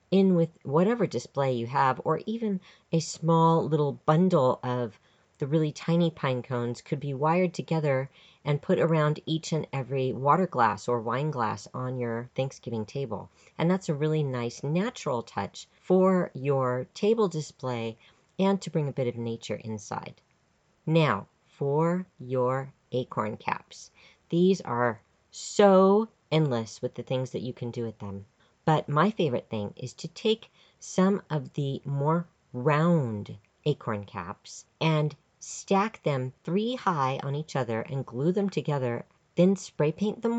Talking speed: 155 wpm